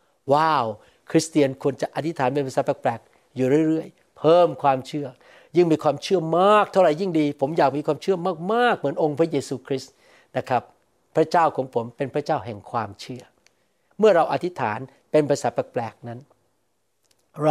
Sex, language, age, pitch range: male, Thai, 60-79, 140-175 Hz